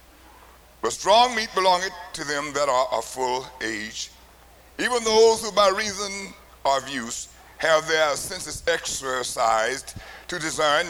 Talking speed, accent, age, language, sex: 130 wpm, American, 60-79, English, male